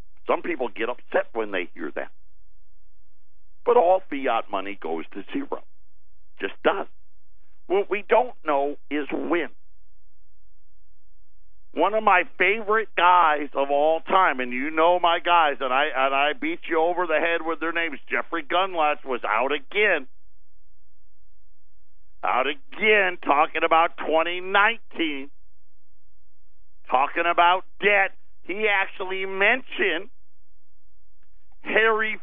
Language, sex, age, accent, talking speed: English, male, 50-69, American, 120 wpm